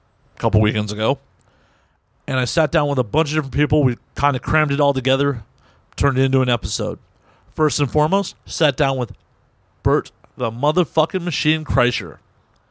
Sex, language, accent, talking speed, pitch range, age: male, English, American, 170 wpm, 115-145 Hz, 40-59